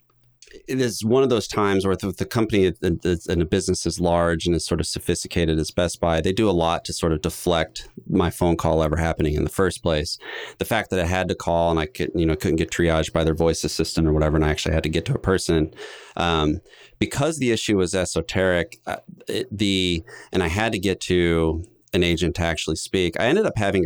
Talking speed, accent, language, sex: 230 wpm, American, English, male